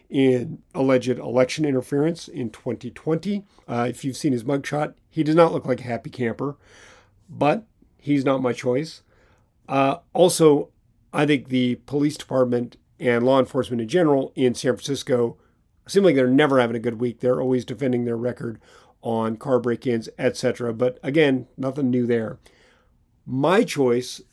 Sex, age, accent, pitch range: male, 50-69, American, 125-150 Hz